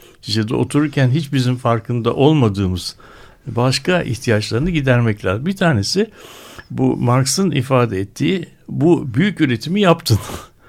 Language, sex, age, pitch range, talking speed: Turkish, male, 60-79, 110-145 Hz, 105 wpm